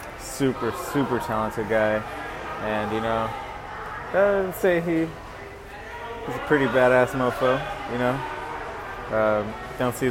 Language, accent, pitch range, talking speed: English, American, 105-125 Hz, 120 wpm